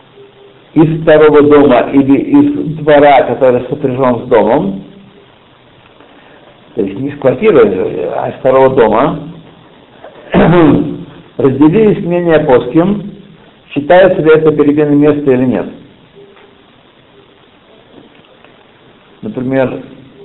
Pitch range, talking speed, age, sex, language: 125-170 Hz, 90 wpm, 50-69, male, Russian